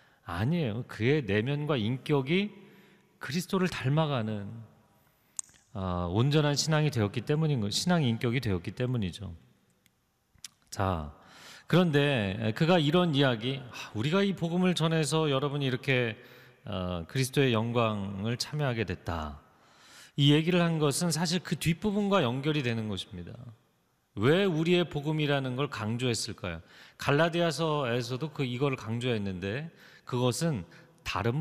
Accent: native